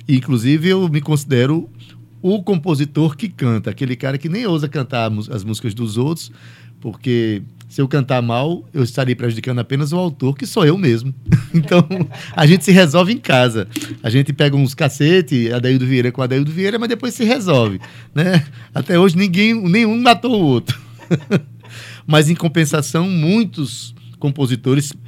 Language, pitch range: Portuguese, 120-155 Hz